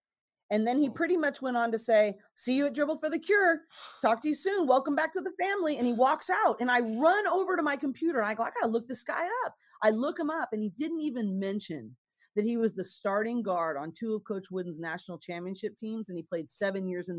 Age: 40-59